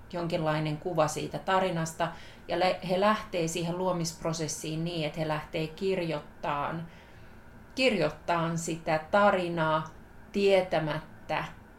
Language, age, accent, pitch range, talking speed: Finnish, 30-49, native, 155-180 Hz, 90 wpm